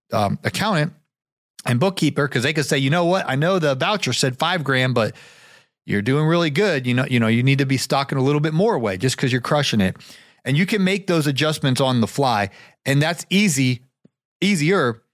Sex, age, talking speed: male, 30-49, 220 wpm